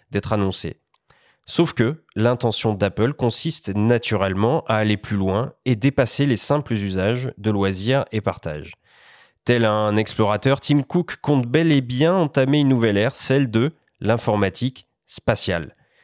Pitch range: 105-135 Hz